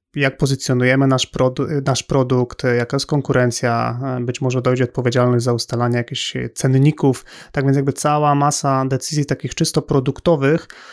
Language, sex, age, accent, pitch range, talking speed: Polish, male, 30-49, native, 130-145 Hz, 135 wpm